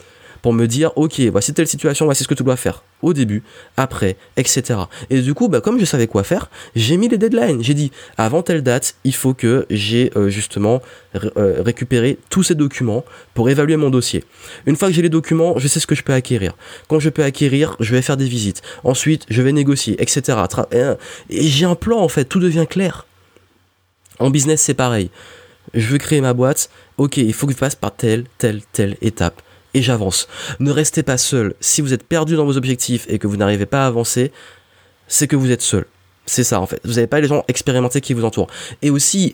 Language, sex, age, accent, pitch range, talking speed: French, male, 20-39, French, 110-145 Hz, 220 wpm